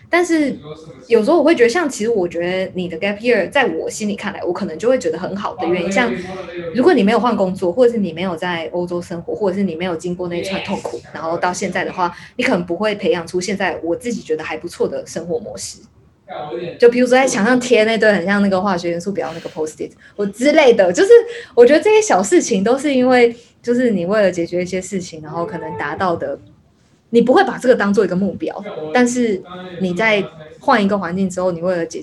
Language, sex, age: Chinese, female, 20-39